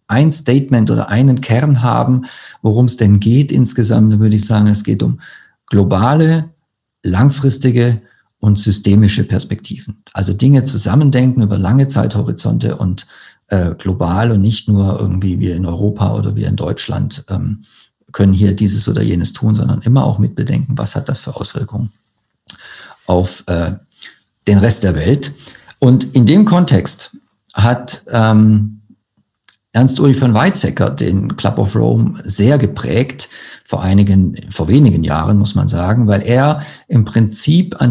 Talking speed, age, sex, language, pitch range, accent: 145 wpm, 50-69, male, German, 105-140 Hz, German